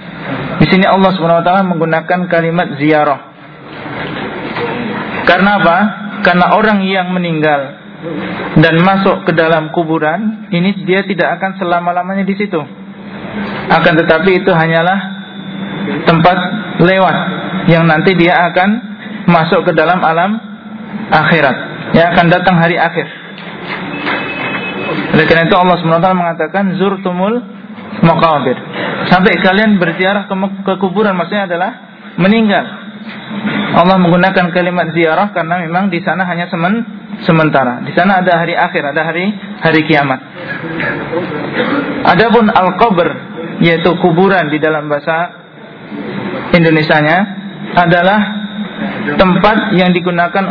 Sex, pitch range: male, 170-195 Hz